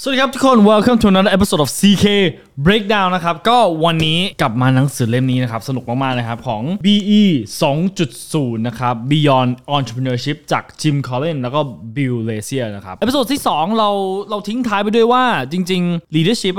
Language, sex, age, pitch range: Thai, male, 20-39, 130-190 Hz